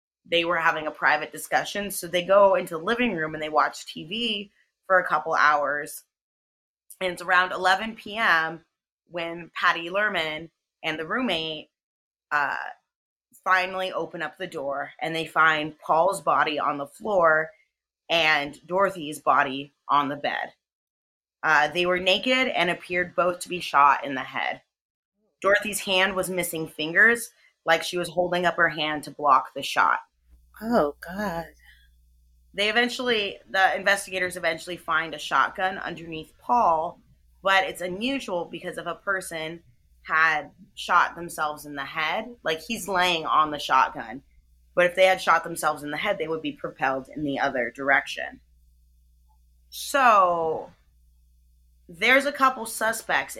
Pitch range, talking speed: 150-190 Hz, 150 wpm